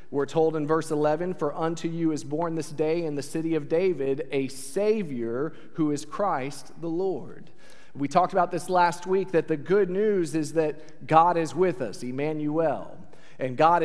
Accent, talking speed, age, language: American, 185 wpm, 40-59, English